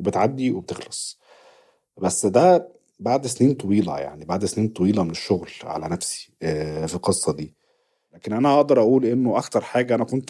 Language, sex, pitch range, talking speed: Arabic, male, 90-120 Hz, 155 wpm